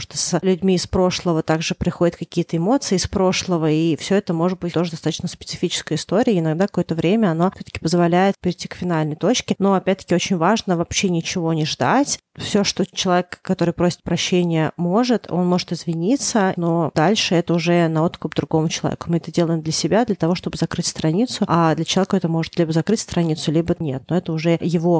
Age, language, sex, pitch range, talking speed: 30-49, Russian, female, 165-190 Hz, 190 wpm